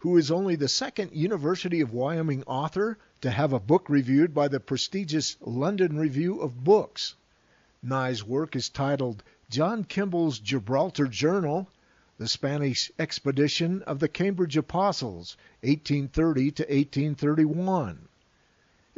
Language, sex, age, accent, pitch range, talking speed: English, male, 50-69, American, 135-175 Hz, 115 wpm